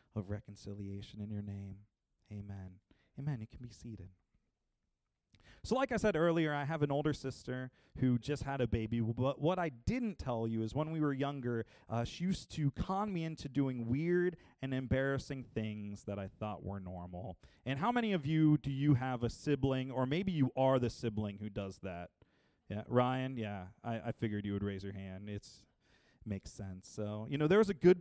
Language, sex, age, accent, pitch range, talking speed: English, male, 30-49, American, 105-140 Hz, 200 wpm